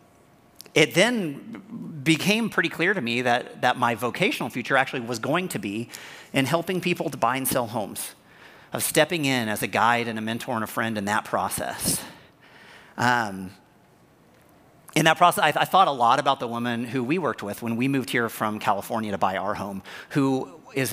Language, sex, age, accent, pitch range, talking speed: English, male, 40-59, American, 115-155 Hz, 195 wpm